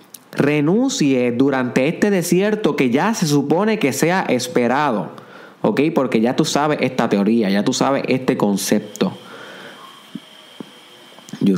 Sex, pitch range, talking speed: male, 120-160 Hz, 125 wpm